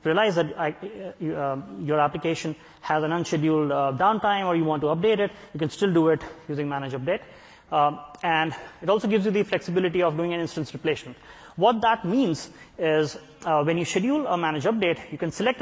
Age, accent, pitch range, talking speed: 30-49, Indian, 155-195 Hz, 200 wpm